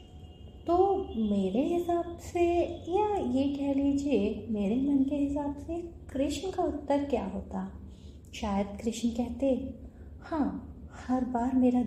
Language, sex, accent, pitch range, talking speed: Hindi, female, native, 190-255 Hz, 125 wpm